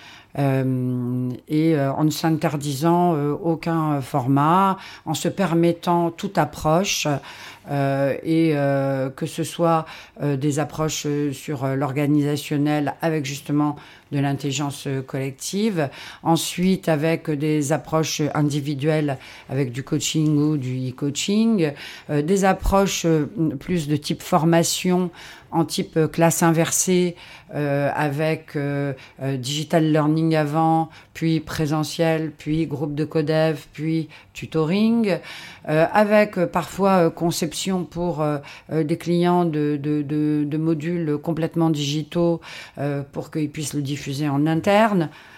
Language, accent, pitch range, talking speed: French, French, 150-175 Hz, 115 wpm